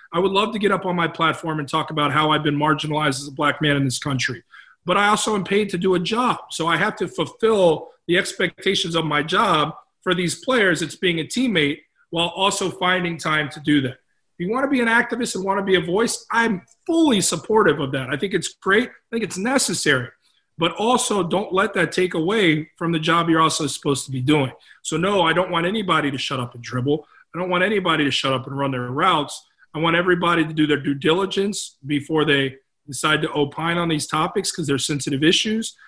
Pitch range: 145-190 Hz